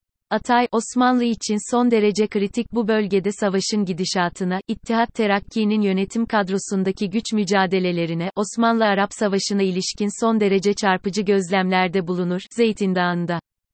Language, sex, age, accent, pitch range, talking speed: Turkish, female, 30-49, native, 190-225 Hz, 115 wpm